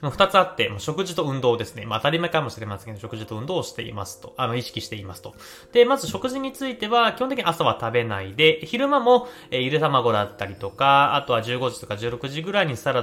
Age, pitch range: 20-39, 105-175 Hz